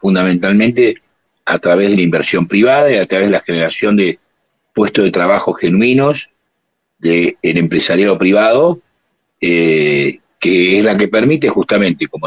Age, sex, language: 60-79, male, Spanish